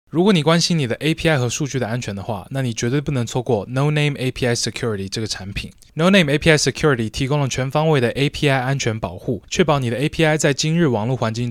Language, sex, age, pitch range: Chinese, male, 20-39, 115-150 Hz